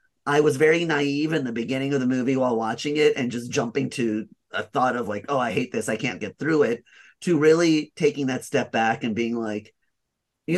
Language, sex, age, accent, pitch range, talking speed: English, male, 30-49, American, 115-160 Hz, 225 wpm